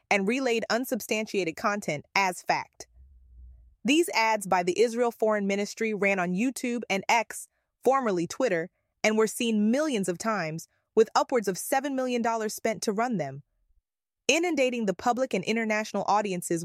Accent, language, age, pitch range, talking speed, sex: American, English, 20-39, 170-240 Hz, 150 wpm, female